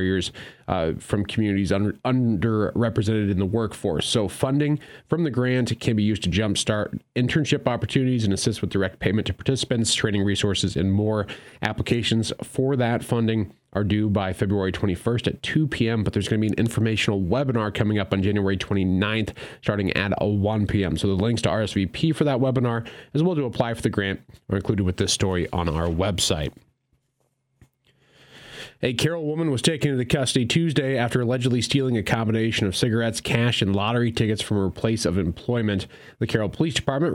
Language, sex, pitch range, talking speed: English, male, 100-120 Hz, 175 wpm